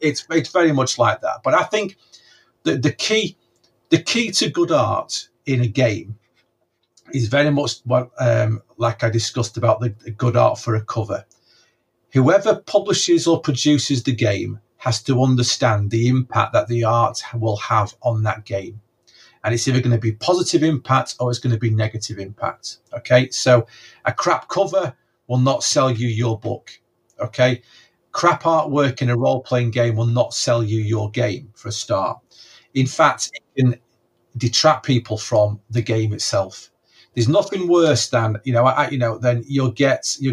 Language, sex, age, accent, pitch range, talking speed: English, male, 40-59, British, 115-145 Hz, 180 wpm